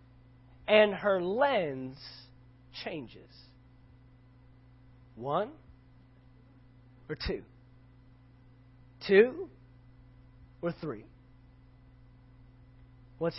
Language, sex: English, male